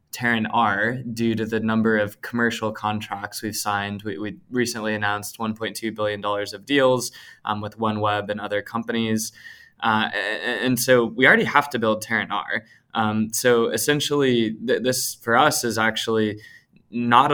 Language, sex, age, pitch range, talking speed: English, male, 20-39, 105-115 Hz, 155 wpm